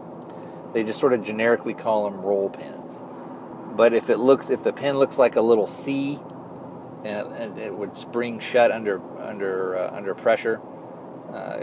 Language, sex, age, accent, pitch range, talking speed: English, male, 30-49, American, 100-125 Hz, 175 wpm